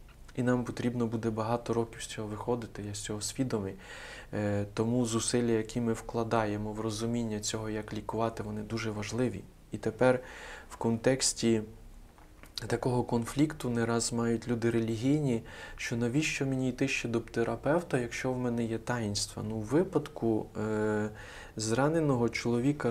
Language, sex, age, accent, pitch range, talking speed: Ukrainian, male, 20-39, native, 105-120 Hz, 140 wpm